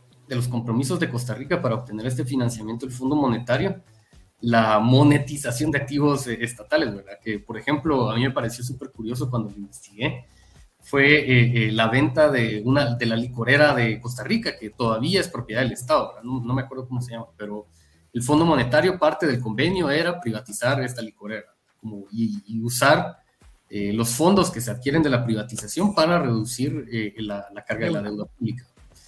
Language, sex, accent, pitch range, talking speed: Spanish, male, Mexican, 115-150 Hz, 190 wpm